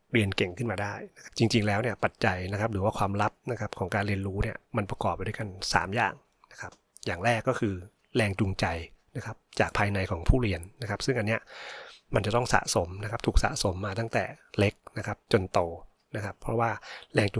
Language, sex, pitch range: Thai, male, 100-115 Hz